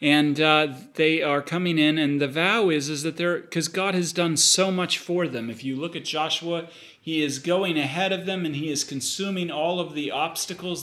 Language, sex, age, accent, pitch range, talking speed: English, male, 40-59, American, 145-175 Hz, 220 wpm